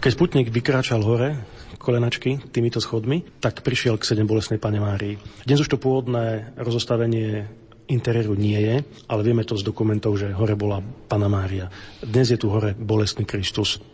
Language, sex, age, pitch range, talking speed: Slovak, male, 40-59, 110-120 Hz, 165 wpm